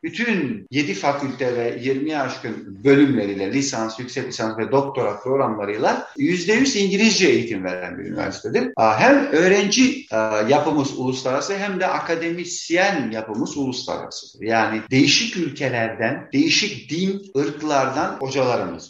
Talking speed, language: 110 wpm, Turkish